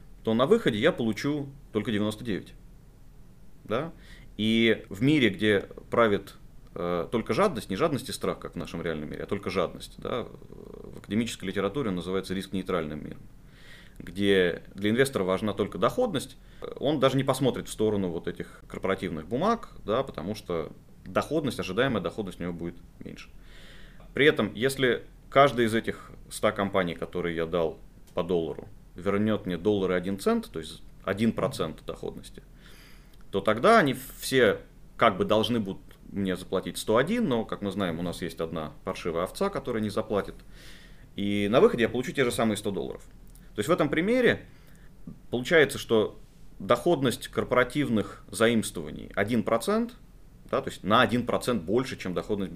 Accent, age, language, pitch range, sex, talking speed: native, 30-49, Russian, 95-125 Hz, male, 160 wpm